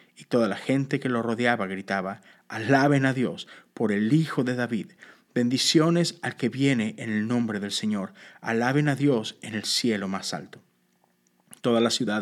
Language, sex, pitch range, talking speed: Spanish, male, 105-140 Hz, 175 wpm